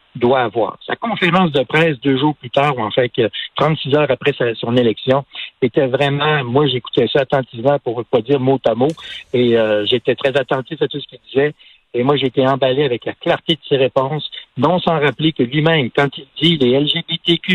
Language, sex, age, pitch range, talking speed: French, male, 60-79, 135-170 Hz, 210 wpm